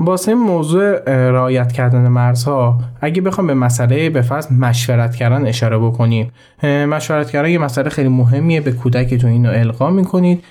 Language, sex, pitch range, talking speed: Persian, male, 120-145 Hz, 155 wpm